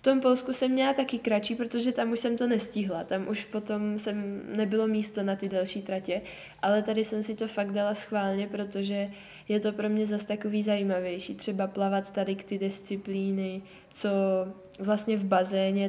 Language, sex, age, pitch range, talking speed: Czech, female, 10-29, 185-210 Hz, 185 wpm